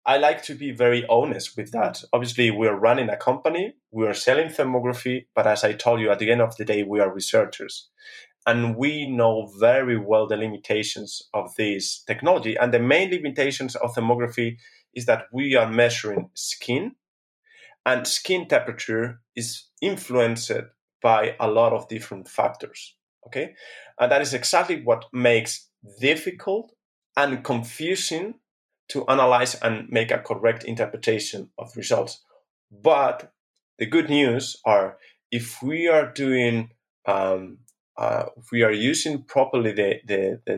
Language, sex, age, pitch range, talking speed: English, male, 30-49, 110-135 Hz, 150 wpm